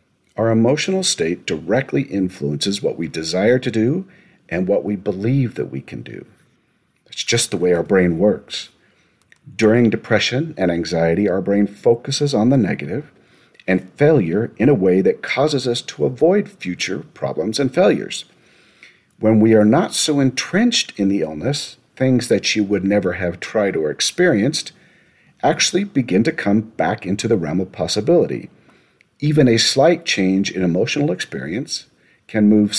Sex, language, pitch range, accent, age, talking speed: male, English, 95-125 Hz, American, 50-69, 155 wpm